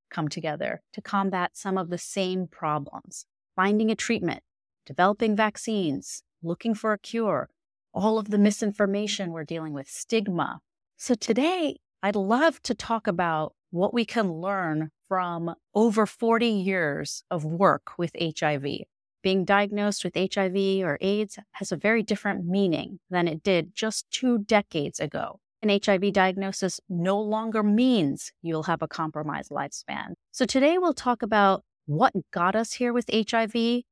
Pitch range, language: 175-220 Hz, English